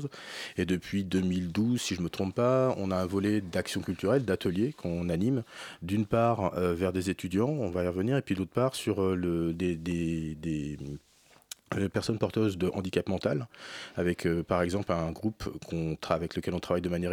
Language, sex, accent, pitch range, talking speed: French, male, French, 85-105 Hz, 195 wpm